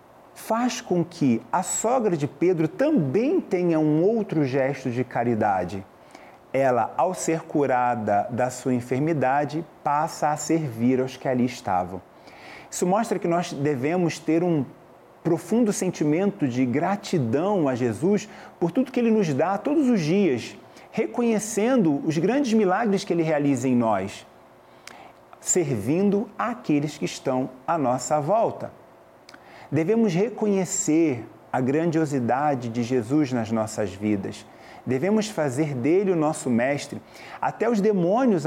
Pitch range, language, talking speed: 130-190 Hz, Portuguese, 130 wpm